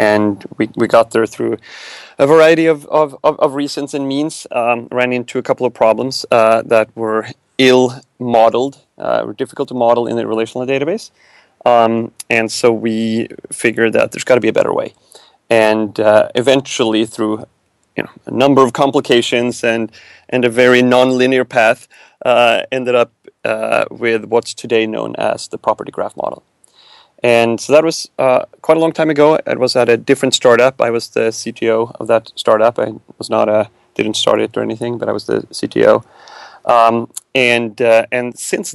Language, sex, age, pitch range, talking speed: English, male, 30-49, 115-130 Hz, 185 wpm